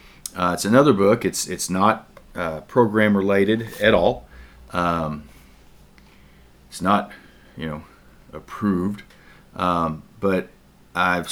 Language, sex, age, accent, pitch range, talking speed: English, male, 40-59, American, 85-105 Hz, 110 wpm